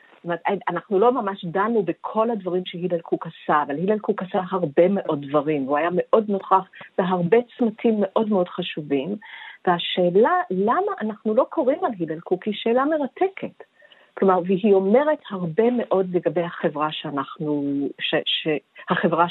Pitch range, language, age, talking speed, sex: 180-235 Hz, Hebrew, 50-69, 145 wpm, female